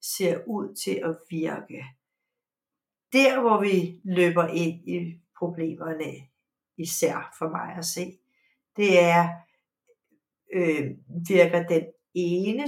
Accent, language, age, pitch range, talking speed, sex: native, Danish, 60-79, 175-210 Hz, 110 wpm, female